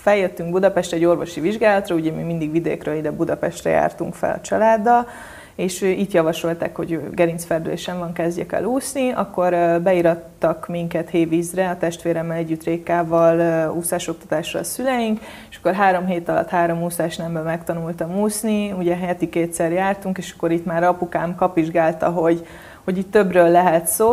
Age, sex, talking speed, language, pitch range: 30-49, female, 150 wpm, Hungarian, 170-190 Hz